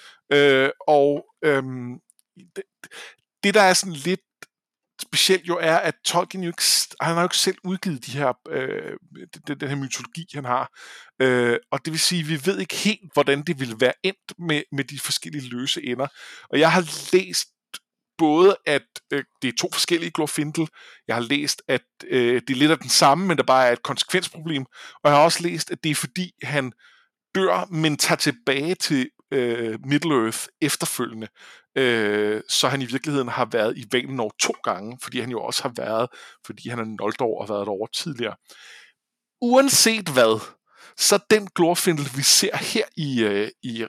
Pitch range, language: 130-175 Hz, Danish